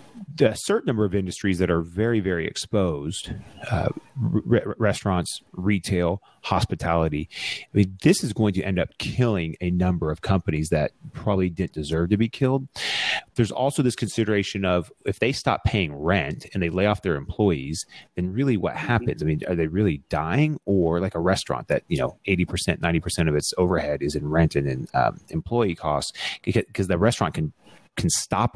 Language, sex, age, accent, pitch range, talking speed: English, male, 30-49, American, 80-105 Hz, 185 wpm